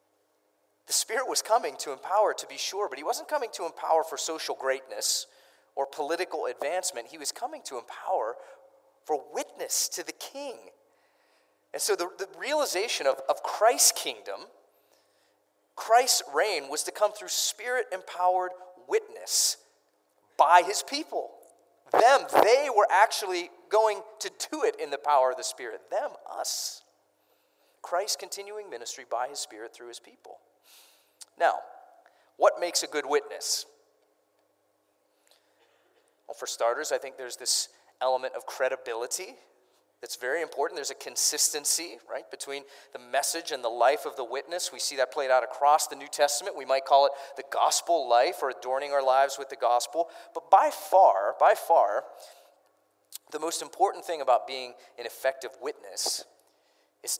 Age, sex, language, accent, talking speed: 30-49, male, English, American, 155 wpm